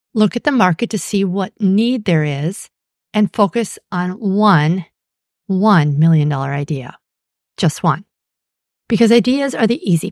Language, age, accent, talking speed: English, 50-69, American, 150 wpm